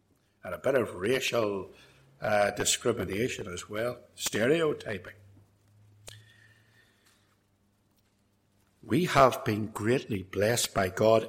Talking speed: 90 wpm